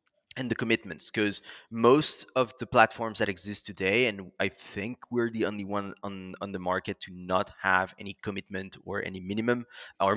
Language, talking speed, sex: English, 185 wpm, male